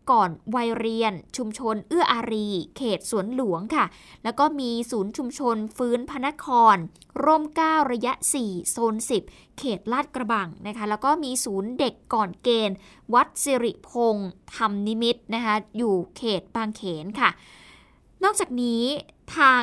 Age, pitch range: 20-39, 215-265 Hz